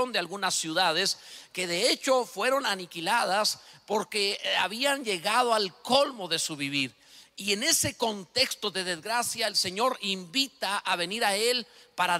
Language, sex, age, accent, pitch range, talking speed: Spanish, male, 50-69, Mexican, 175-230 Hz, 150 wpm